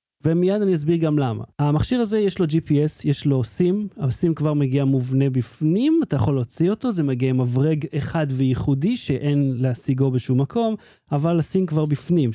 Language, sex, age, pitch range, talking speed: Hebrew, male, 30-49, 135-180 Hz, 175 wpm